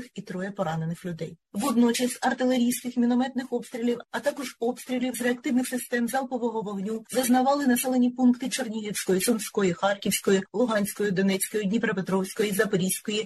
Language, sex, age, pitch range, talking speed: Ukrainian, female, 30-49, 195-245 Hz, 120 wpm